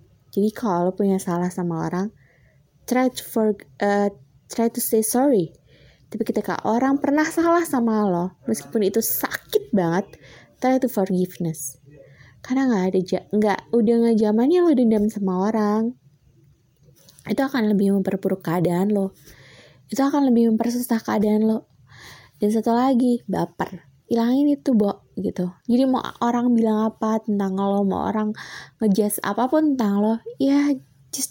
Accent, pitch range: native, 165-235 Hz